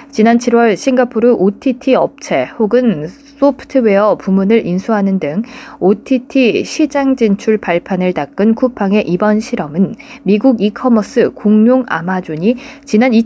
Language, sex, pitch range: Korean, female, 195-255 Hz